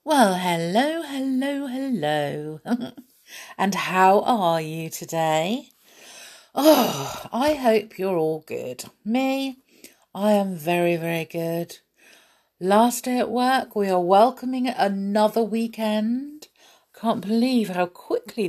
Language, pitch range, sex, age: English, 160-240 Hz, female, 50-69